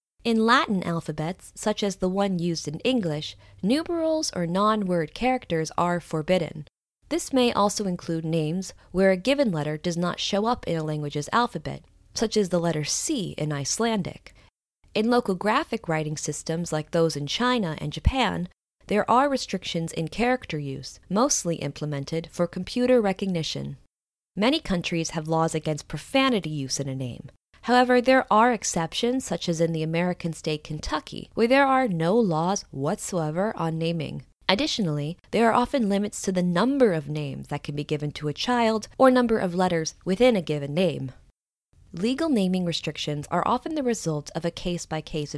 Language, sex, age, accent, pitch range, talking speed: English, female, 20-39, American, 155-225 Hz, 165 wpm